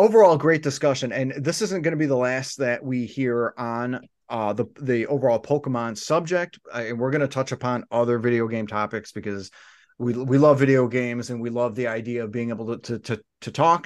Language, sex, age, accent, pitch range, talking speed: English, male, 30-49, American, 115-140 Hz, 220 wpm